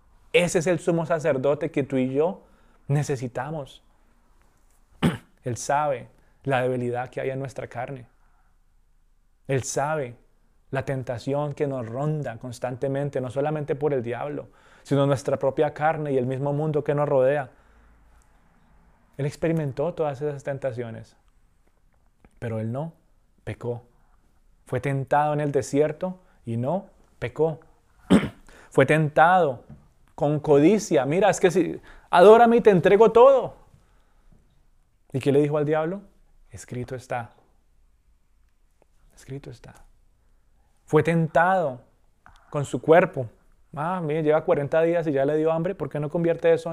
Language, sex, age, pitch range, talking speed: Spanish, male, 30-49, 115-150 Hz, 130 wpm